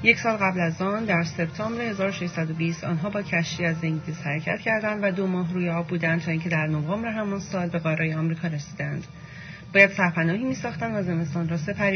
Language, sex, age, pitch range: Persian, female, 30-49, 160-190 Hz